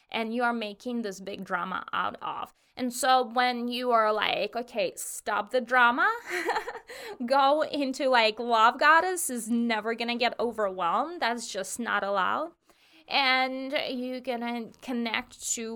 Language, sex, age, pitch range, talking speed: English, female, 20-39, 200-245 Hz, 150 wpm